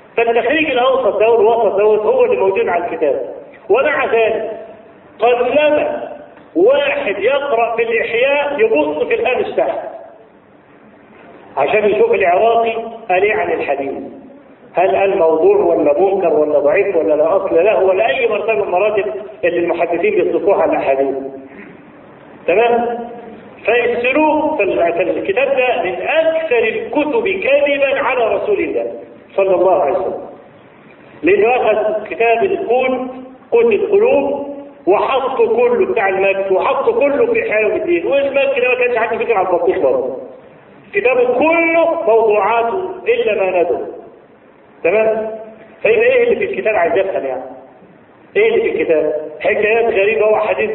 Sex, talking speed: male, 125 wpm